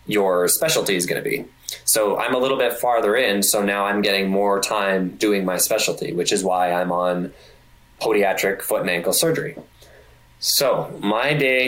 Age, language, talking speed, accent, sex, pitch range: 20-39, English, 180 wpm, American, male, 95-110 Hz